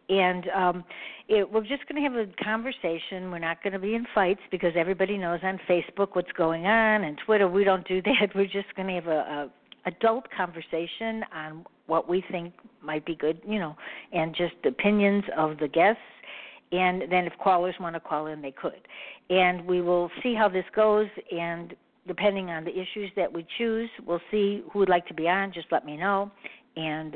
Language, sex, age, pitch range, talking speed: English, female, 60-79, 170-210 Hz, 205 wpm